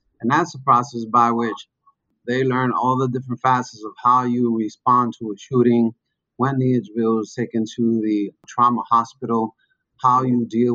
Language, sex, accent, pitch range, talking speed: English, male, American, 115-125 Hz, 175 wpm